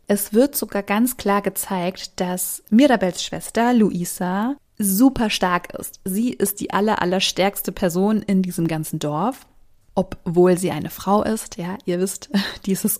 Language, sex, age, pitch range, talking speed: German, female, 20-39, 185-225 Hz, 150 wpm